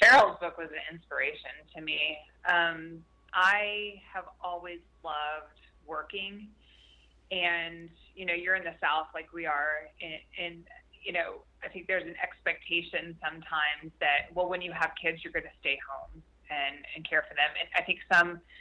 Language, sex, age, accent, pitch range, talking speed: English, female, 20-39, American, 155-180 Hz, 170 wpm